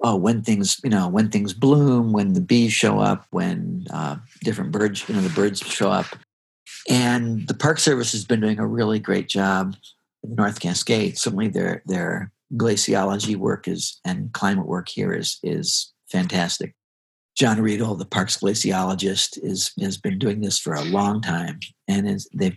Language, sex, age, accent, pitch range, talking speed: English, male, 50-69, American, 100-135 Hz, 180 wpm